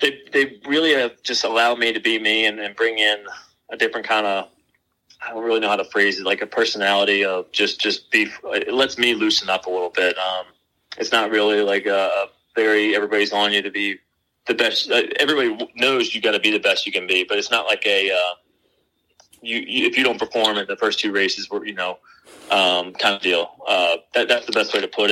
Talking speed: 235 wpm